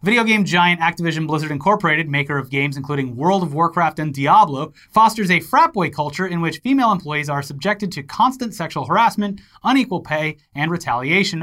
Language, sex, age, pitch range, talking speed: English, male, 30-49, 145-205 Hz, 180 wpm